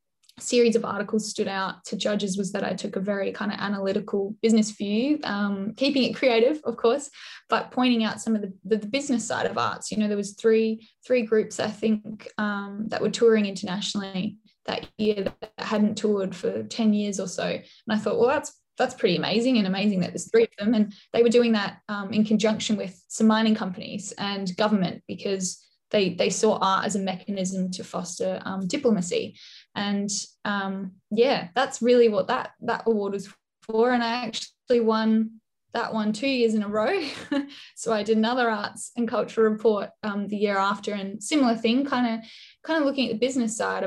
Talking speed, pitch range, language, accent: 200 wpm, 200-230 Hz, English, Australian